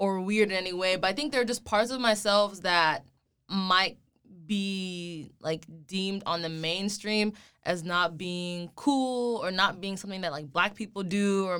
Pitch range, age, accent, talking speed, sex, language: 175-215 Hz, 20-39, American, 185 wpm, female, English